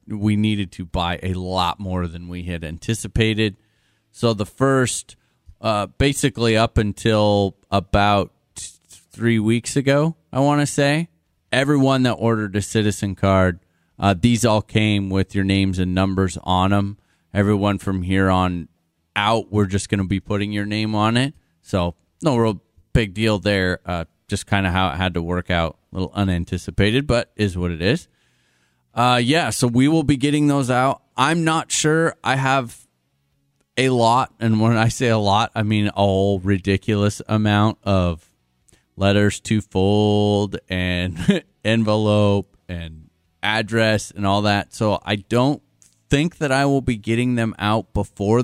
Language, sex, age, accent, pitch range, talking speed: English, male, 30-49, American, 95-120 Hz, 165 wpm